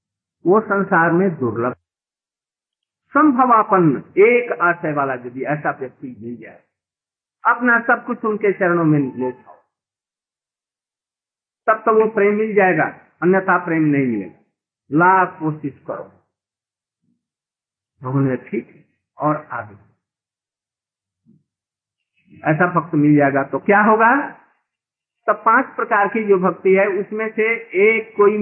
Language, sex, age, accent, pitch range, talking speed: Hindi, male, 50-69, native, 150-220 Hz, 120 wpm